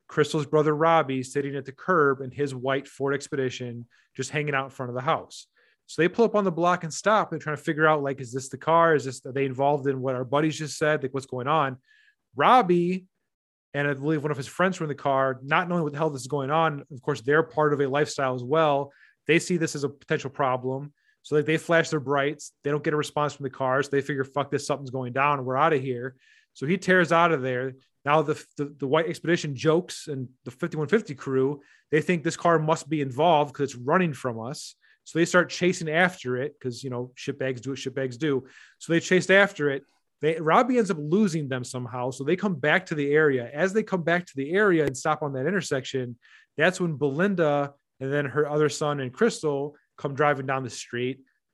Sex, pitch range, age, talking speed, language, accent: male, 135-165 Hz, 30-49, 240 wpm, English, American